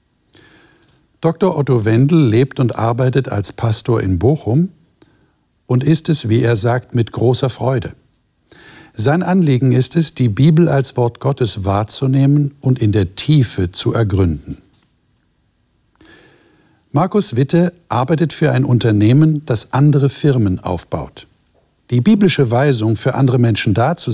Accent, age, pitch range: German, 60-79, 115-150 Hz